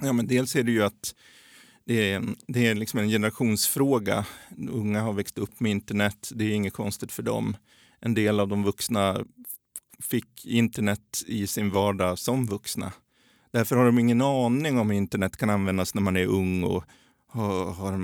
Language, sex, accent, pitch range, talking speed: Swedish, male, native, 105-125 Hz, 180 wpm